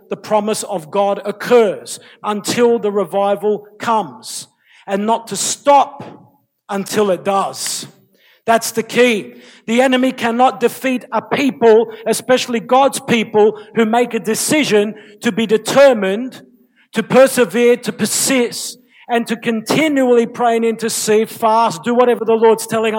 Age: 50-69